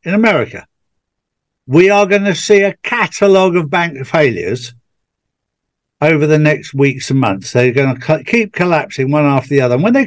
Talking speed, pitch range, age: 180 wpm, 115-145 Hz, 60-79